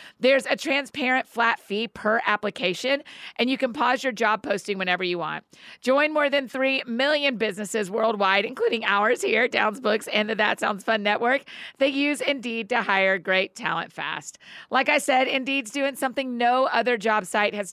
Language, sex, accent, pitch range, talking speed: English, female, American, 205-265 Hz, 185 wpm